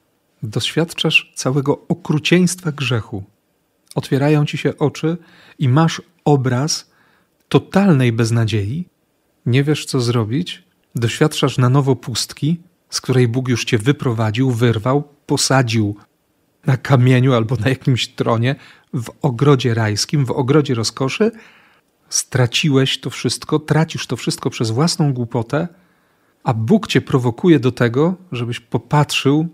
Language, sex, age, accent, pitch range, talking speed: Polish, male, 40-59, native, 115-145 Hz, 120 wpm